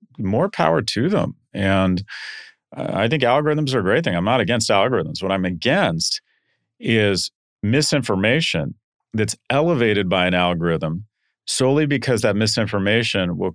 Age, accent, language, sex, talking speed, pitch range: 40-59, American, English, male, 140 wpm, 95-125 Hz